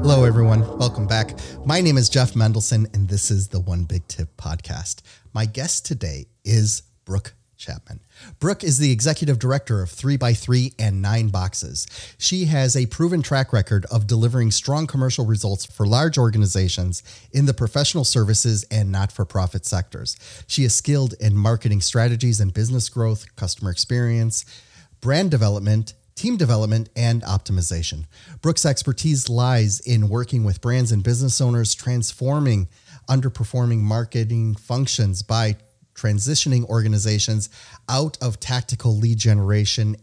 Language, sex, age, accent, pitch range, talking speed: English, male, 30-49, American, 105-125 Hz, 140 wpm